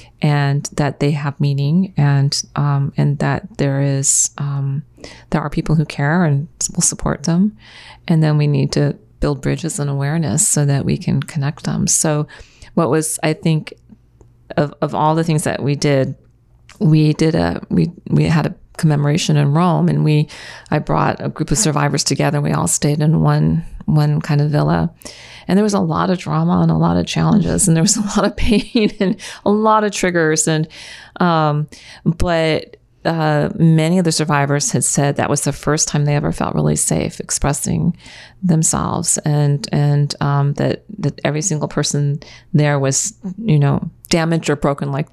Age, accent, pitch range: 40-59, American, 145-165 Hz